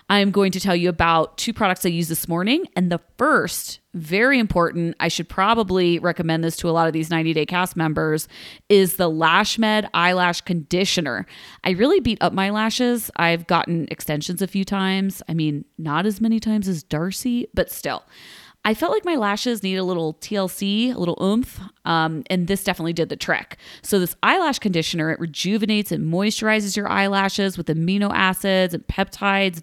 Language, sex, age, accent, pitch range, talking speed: English, female, 30-49, American, 165-205 Hz, 185 wpm